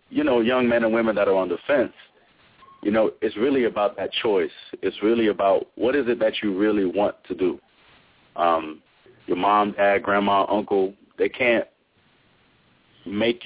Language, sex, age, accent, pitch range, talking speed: English, male, 30-49, American, 95-120 Hz, 175 wpm